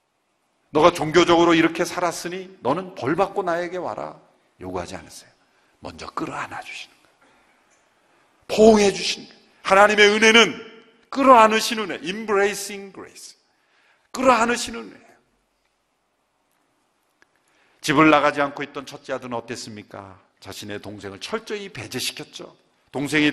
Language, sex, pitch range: Korean, male, 135-210 Hz